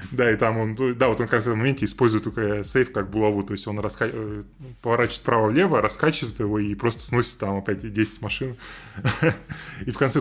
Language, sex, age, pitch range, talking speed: Russian, male, 20-39, 110-135 Hz, 200 wpm